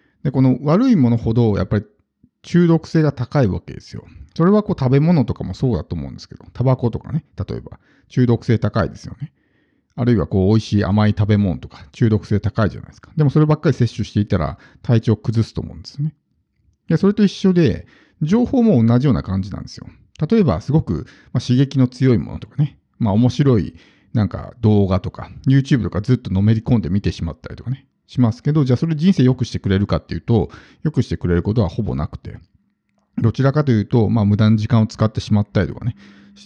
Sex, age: male, 50-69